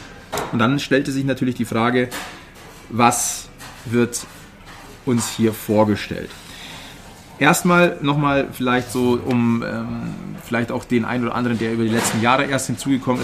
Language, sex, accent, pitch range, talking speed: German, male, German, 110-135 Hz, 140 wpm